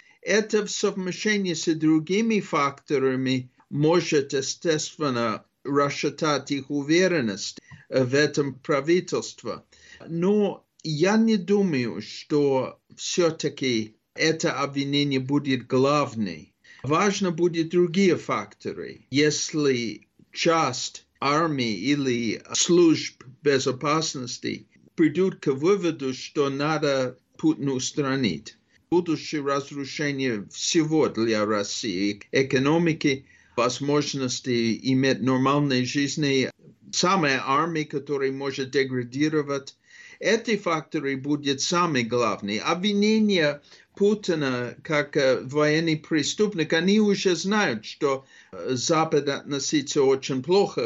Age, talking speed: 50-69, 85 wpm